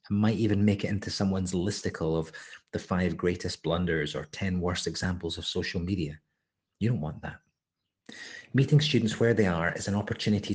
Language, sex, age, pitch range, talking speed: English, male, 30-49, 90-115 Hz, 175 wpm